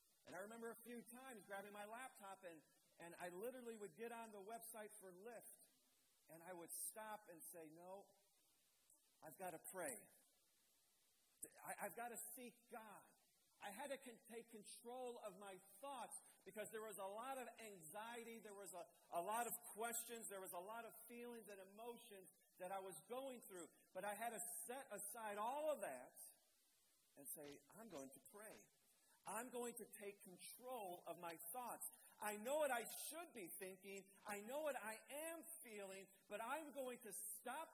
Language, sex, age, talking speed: English, male, 50-69, 180 wpm